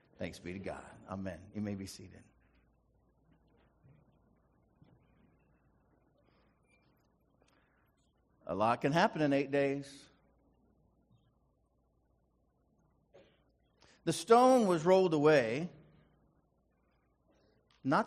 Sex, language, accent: male, English, American